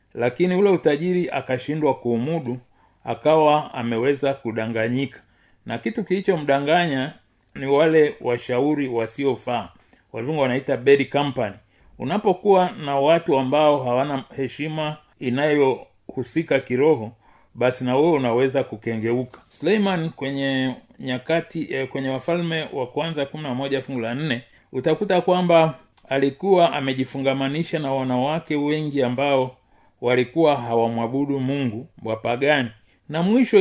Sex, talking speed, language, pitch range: male, 100 wpm, Swahili, 125-155 Hz